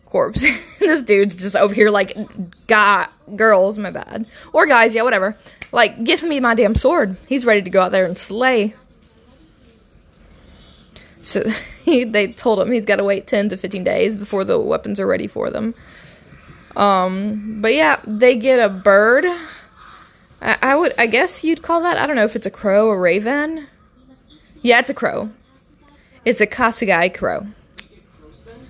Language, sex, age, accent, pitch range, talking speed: English, female, 10-29, American, 200-265 Hz, 165 wpm